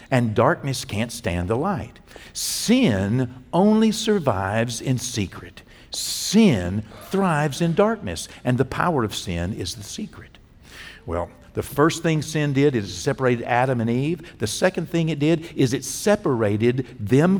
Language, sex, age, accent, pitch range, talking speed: English, male, 60-79, American, 105-170 Hz, 150 wpm